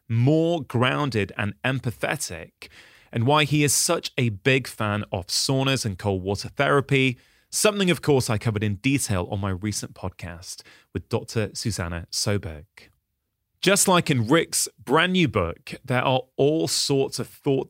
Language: English